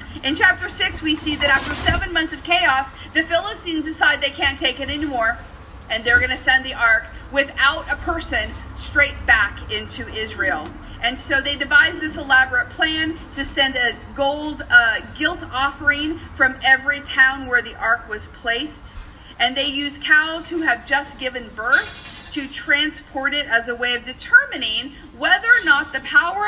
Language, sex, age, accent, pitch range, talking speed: English, female, 40-59, American, 250-335 Hz, 175 wpm